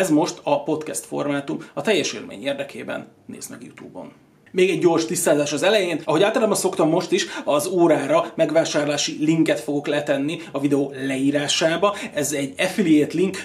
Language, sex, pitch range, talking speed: Hungarian, male, 140-165 Hz, 160 wpm